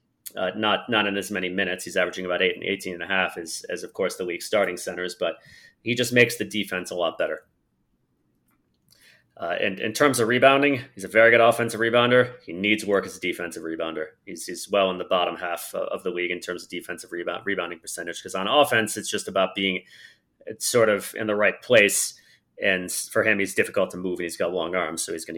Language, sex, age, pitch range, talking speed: English, male, 30-49, 90-120 Hz, 230 wpm